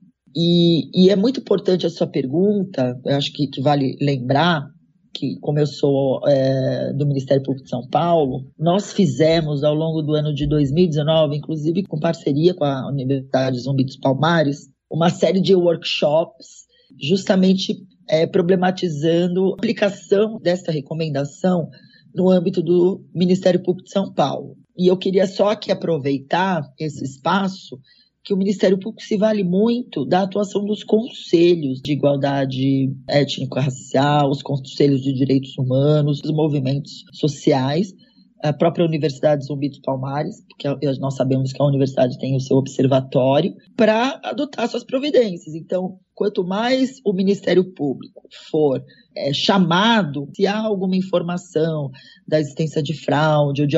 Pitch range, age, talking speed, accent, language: 140-190 Hz, 20-39, 140 wpm, Brazilian, Portuguese